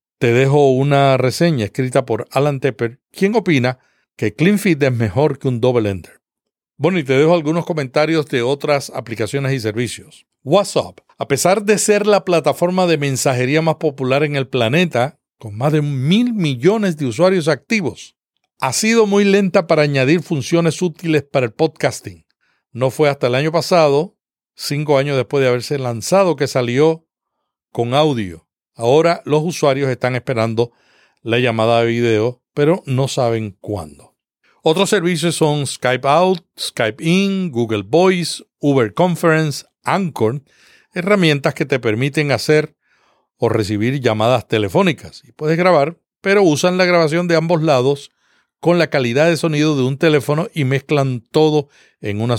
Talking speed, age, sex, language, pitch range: 155 wpm, 60-79, male, Spanish, 130-170 Hz